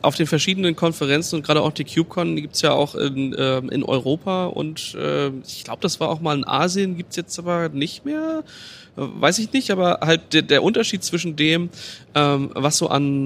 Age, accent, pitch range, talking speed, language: 20-39, German, 130-150 Hz, 215 wpm, German